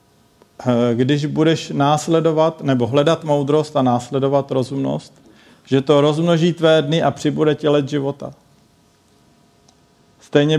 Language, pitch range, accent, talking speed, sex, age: Czech, 130-150 Hz, native, 115 wpm, male, 50-69